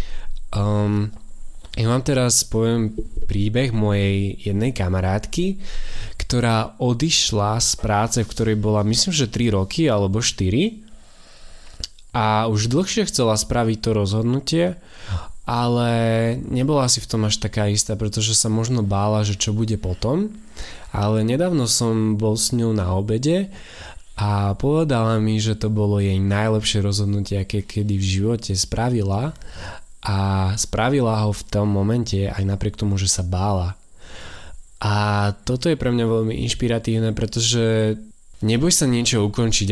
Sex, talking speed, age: male, 135 wpm, 20-39